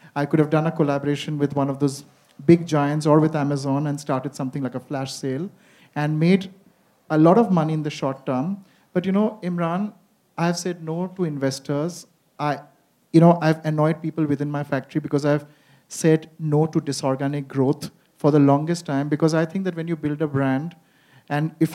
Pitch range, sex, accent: 145-170 Hz, male, Indian